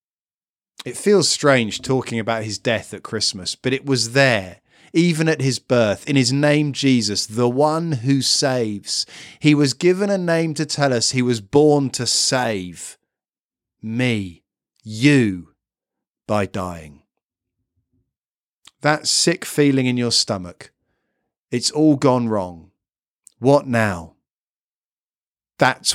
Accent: British